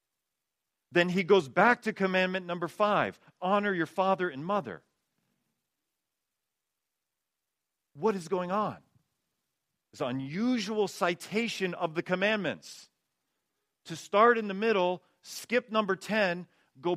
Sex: male